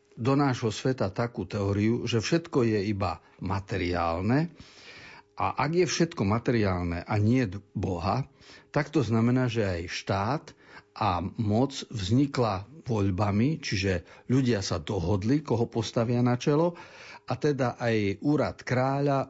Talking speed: 130 wpm